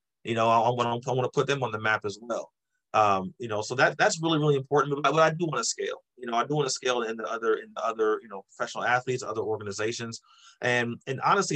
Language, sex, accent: English, male, American